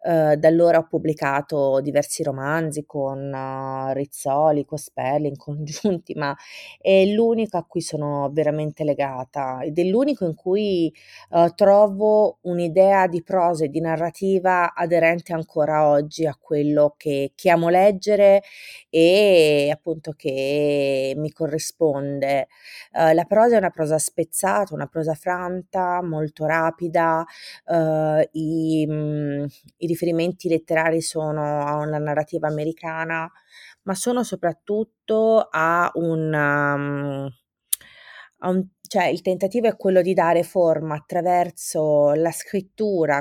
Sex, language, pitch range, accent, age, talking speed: female, Italian, 150-175 Hz, native, 30-49, 120 wpm